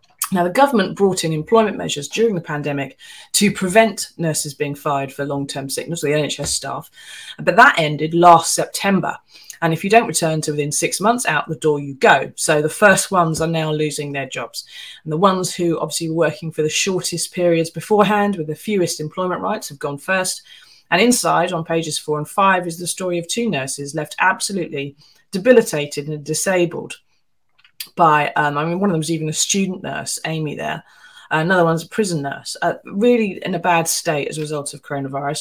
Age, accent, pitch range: 30-49, British, 155-195 Hz